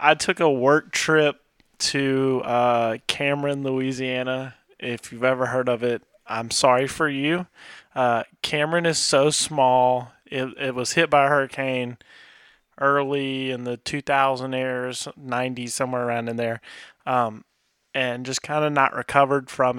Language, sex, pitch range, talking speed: English, male, 125-145 Hz, 150 wpm